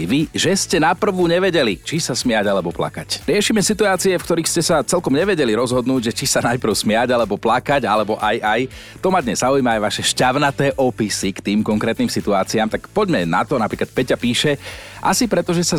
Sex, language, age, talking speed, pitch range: male, Slovak, 40-59, 195 wpm, 110-145 Hz